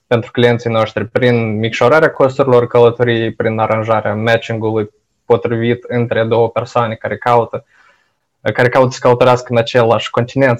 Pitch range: 115-125 Hz